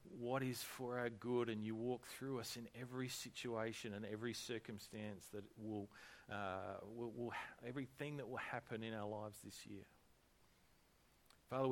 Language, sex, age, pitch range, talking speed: English, male, 40-59, 105-130 Hz, 165 wpm